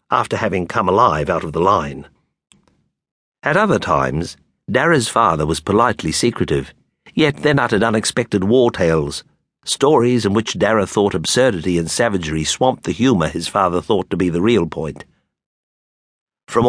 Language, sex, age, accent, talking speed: English, male, 60-79, British, 150 wpm